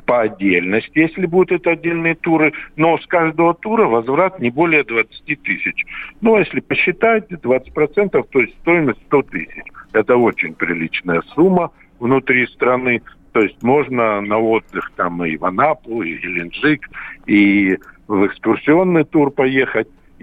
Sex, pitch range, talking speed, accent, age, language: male, 100-160 Hz, 140 wpm, native, 60-79, Russian